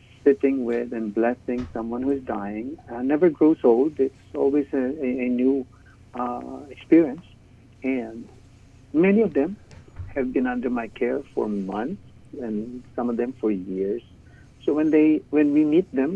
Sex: male